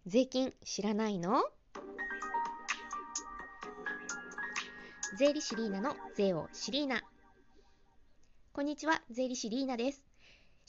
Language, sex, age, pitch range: Japanese, female, 20-39, 175-280 Hz